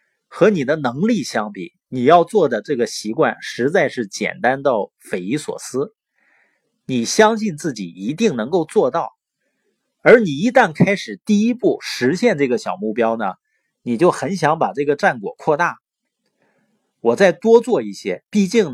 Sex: male